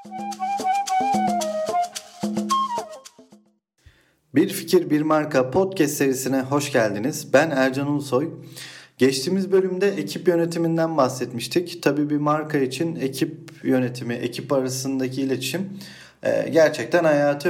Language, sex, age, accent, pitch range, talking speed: Turkish, male, 40-59, native, 140-185 Hz, 95 wpm